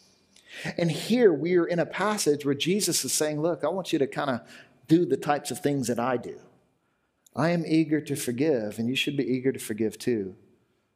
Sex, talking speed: male, 215 wpm